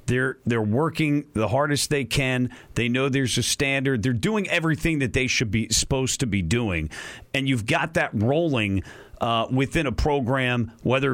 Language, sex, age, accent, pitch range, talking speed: English, male, 40-59, American, 115-145 Hz, 180 wpm